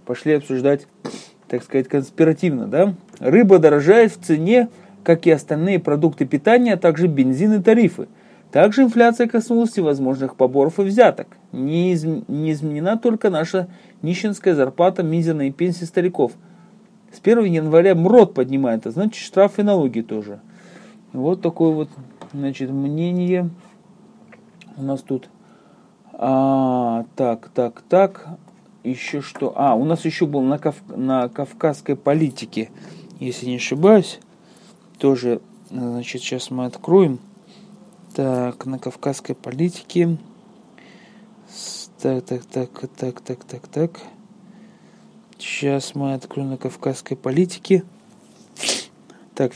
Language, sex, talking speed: Russian, male, 120 wpm